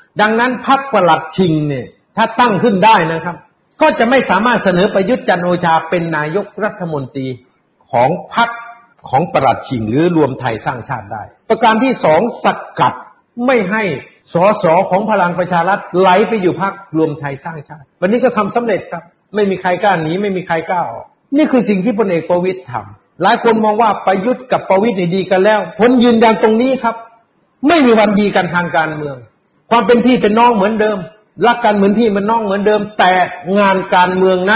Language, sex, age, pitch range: Thai, male, 60-79, 175-230 Hz